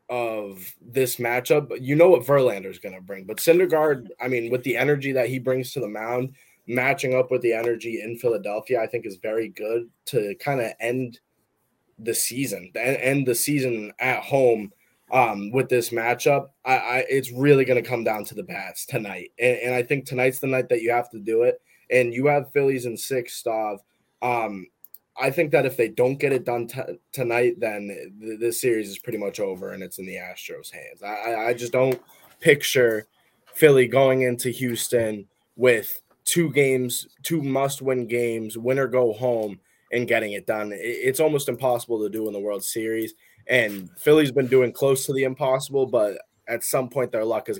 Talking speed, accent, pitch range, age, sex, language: 195 wpm, American, 115-135 Hz, 20-39, male, English